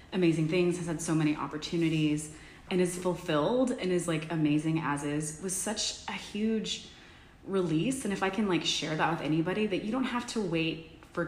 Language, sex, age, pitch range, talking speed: English, female, 20-39, 155-190 Hz, 195 wpm